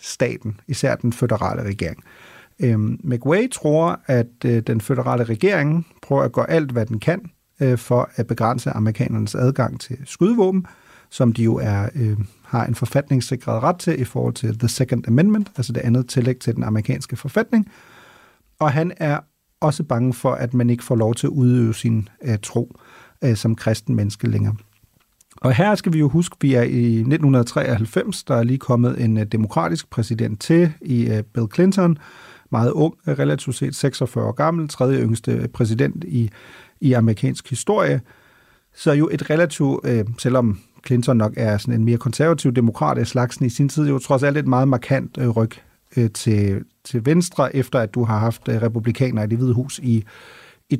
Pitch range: 115-145 Hz